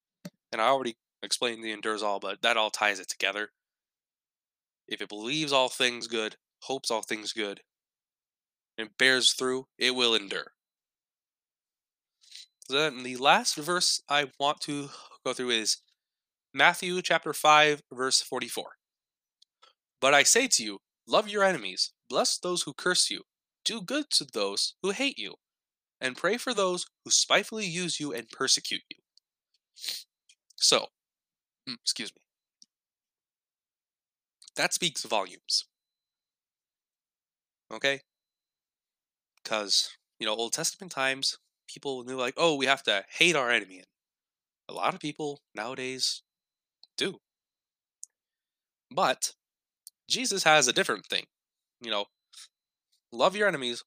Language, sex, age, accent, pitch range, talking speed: English, male, 20-39, American, 120-175 Hz, 125 wpm